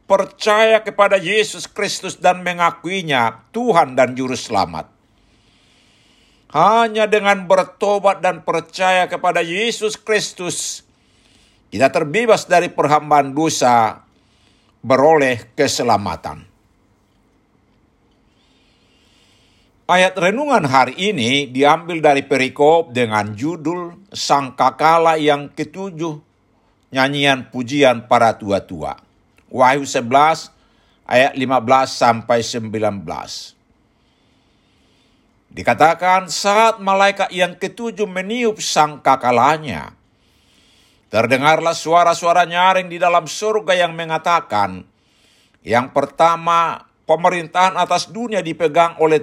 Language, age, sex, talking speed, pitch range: Indonesian, 60-79, male, 85 wpm, 125-185 Hz